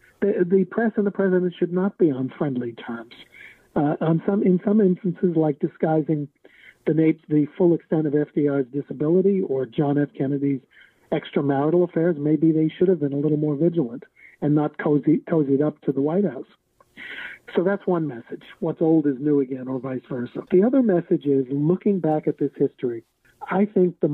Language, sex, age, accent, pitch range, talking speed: English, male, 50-69, American, 140-175 Hz, 185 wpm